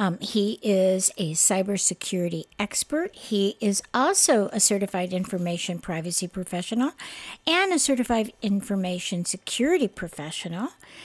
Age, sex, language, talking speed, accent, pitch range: 60-79, female, English, 110 wpm, American, 195-265 Hz